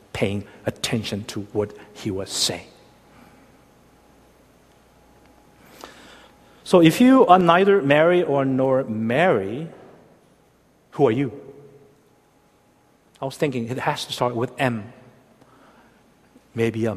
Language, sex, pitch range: Korean, male, 115-160 Hz